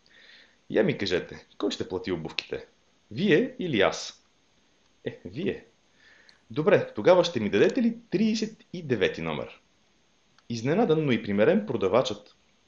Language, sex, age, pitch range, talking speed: Bulgarian, male, 30-49, 100-140 Hz, 120 wpm